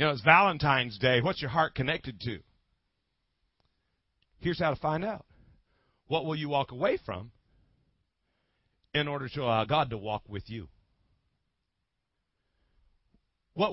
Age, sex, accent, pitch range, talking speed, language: 50-69, male, American, 100-145 Hz, 135 wpm, English